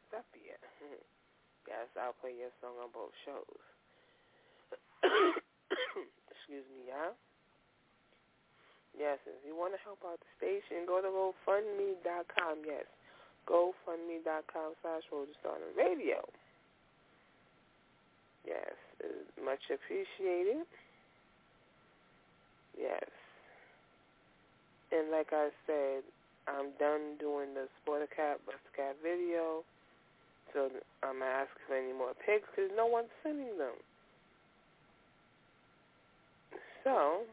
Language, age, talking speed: English, 30-49, 90 wpm